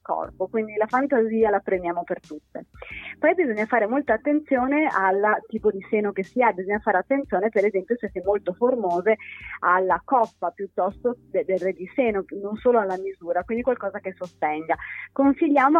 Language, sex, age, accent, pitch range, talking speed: Italian, female, 30-49, native, 190-255 Hz, 170 wpm